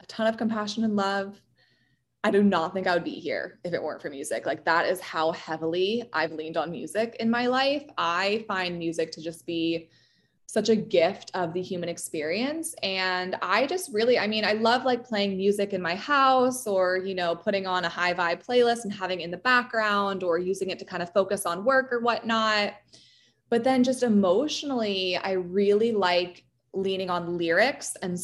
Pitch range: 175-220 Hz